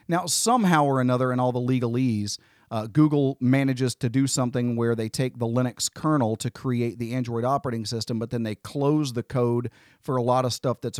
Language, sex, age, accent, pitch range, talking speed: English, male, 40-59, American, 115-140 Hz, 205 wpm